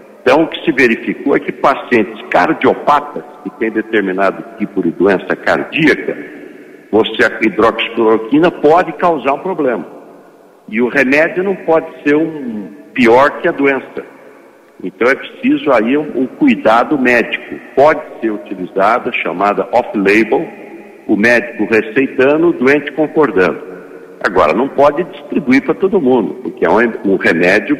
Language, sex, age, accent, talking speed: Portuguese, male, 60-79, Brazilian, 135 wpm